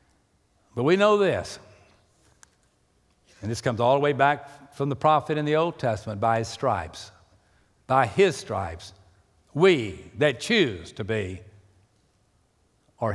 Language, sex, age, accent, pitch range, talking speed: English, male, 60-79, American, 100-145 Hz, 135 wpm